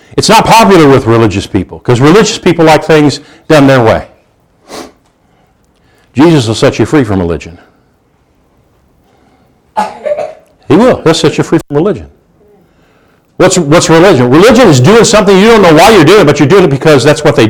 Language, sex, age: English, male, 50-69